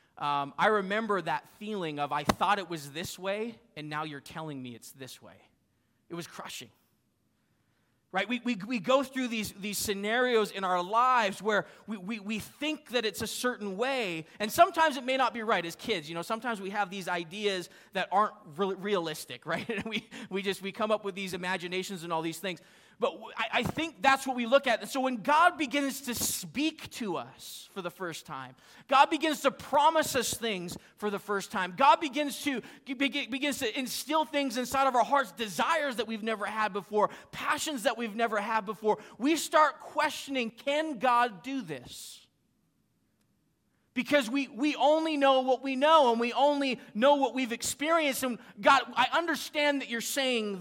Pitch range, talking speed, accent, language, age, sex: 195-270 Hz, 190 wpm, American, English, 30-49, male